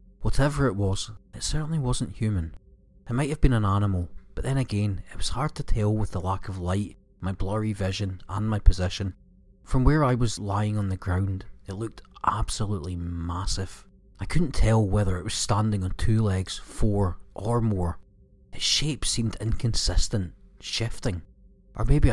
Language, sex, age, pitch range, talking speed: English, male, 30-49, 95-110 Hz, 175 wpm